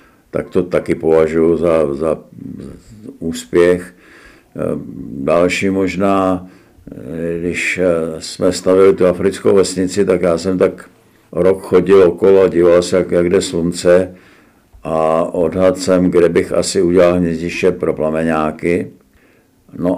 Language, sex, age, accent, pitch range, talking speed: Czech, male, 60-79, native, 80-90 Hz, 125 wpm